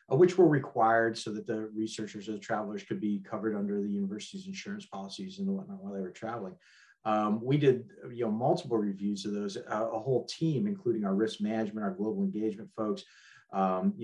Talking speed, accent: 190 wpm, American